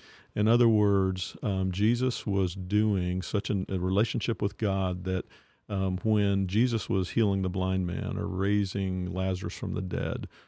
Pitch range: 95-110 Hz